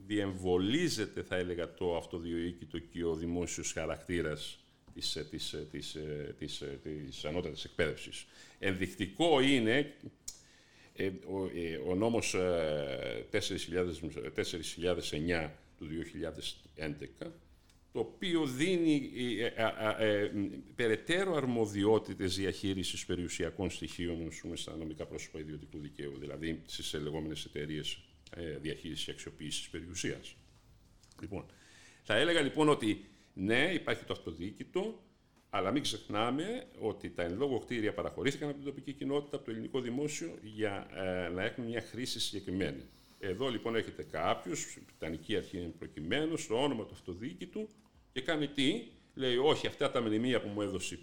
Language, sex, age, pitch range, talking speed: Greek, male, 50-69, 85-120 Hz, 120 wpm